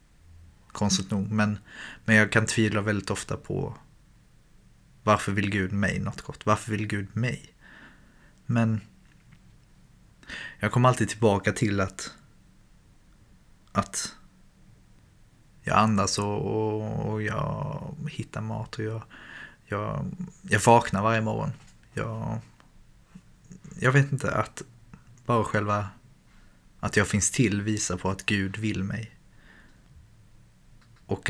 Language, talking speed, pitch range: Swedish, 115 wpm, 100-115 Hz